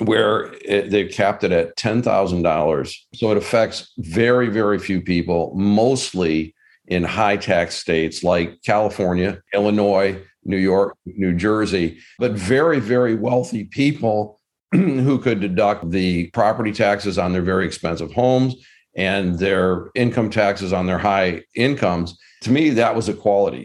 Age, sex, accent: 50-69, male, American